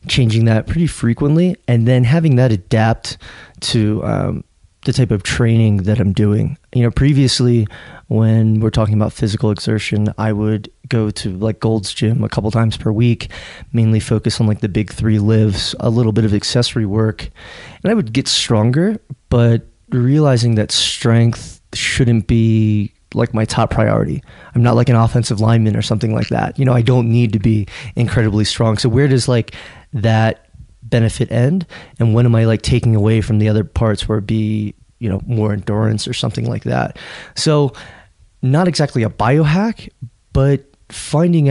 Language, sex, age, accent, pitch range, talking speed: English, male, 20-39, American, 110-125 Hz, 180 wpm